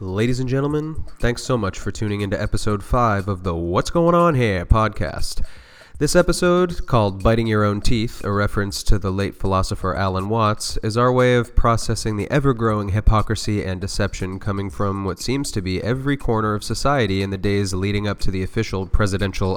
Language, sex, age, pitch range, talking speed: English, male, 30-49, 95-120 Hz, 190 wpm